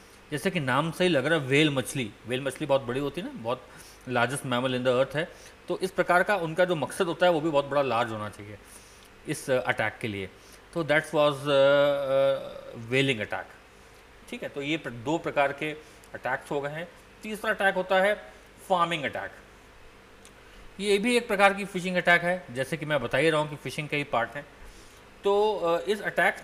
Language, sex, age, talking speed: Hindi, male, 40-59, 210 wpm